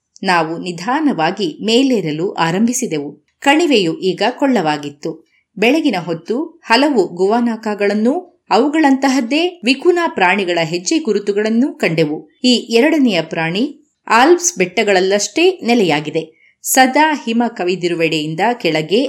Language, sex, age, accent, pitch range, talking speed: Kannada, female, 20-39, native, 175-275 Hz, 90 wpm